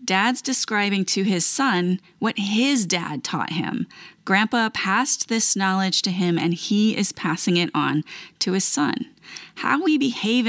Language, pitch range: English, 170-215 Hz